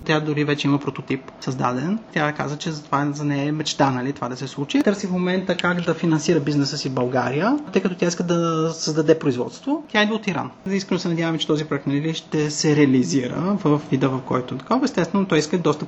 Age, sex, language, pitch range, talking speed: 30-49, male, Bulgarian, 140-190 Hz, 225 wpm